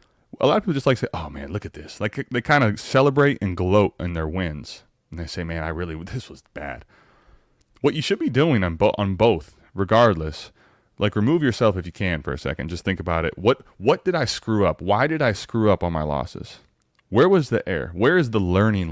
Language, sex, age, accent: English, male, 30-49, American